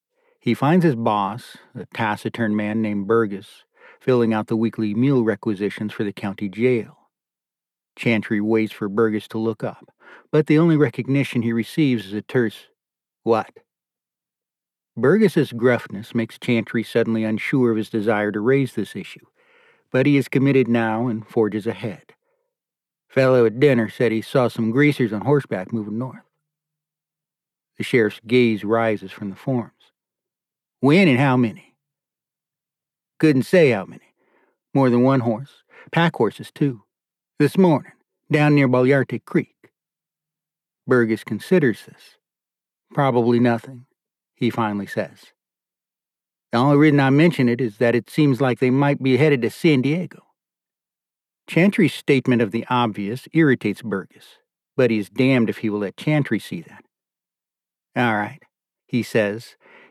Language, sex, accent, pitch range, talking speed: English, male, American, 110-150 Hz, 145 wpm